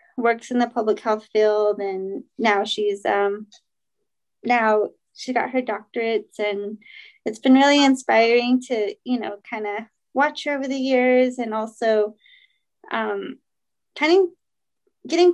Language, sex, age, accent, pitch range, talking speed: English, female, 30-49, American, 215-260 Hz, 140 wpm